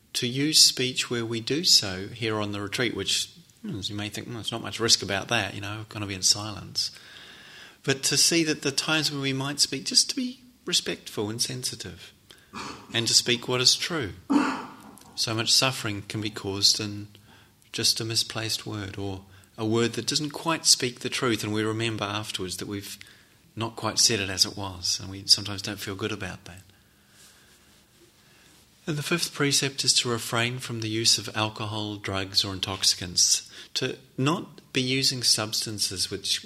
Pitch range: 100-120 Hz